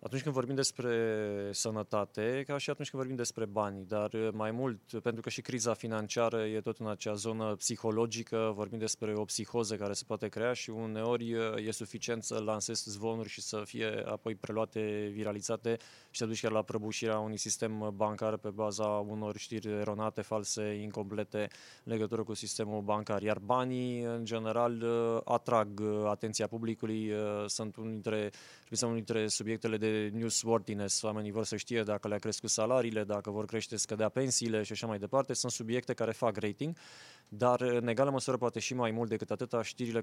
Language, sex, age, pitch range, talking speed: Romanian, male, 20-39, 105-120 Hz, 170 wpm